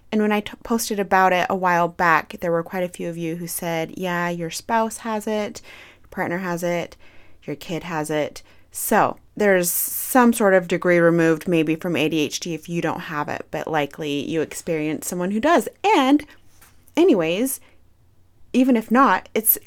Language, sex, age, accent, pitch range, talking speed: English, female, 30-49, American, 165-210 Hz, 185 wpm